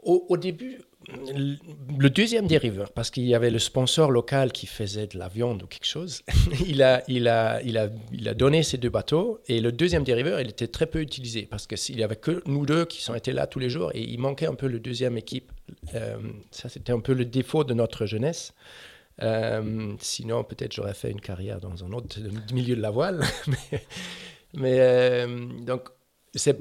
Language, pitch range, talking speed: French, 110-140 Hz, 210 wpm